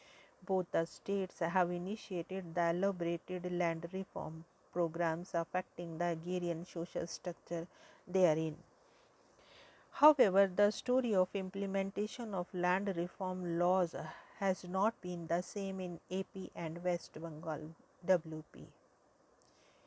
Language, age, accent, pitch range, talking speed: English, 50-69, Indian, 175-200 Hz, 110 wpm